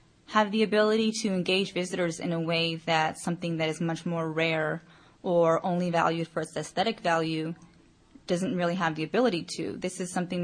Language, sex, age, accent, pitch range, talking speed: English, female, 20-39, American, 165-185 Hz, 185 wpm